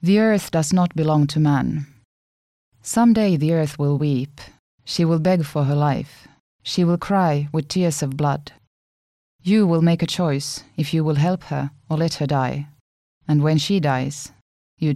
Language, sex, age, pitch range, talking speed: Finnish, female, 30-49, 145-175 Hz, 180 wpm